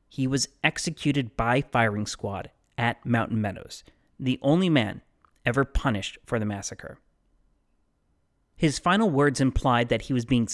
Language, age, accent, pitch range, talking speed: English, 30-49, American, 110-145 Hz, 140 wpm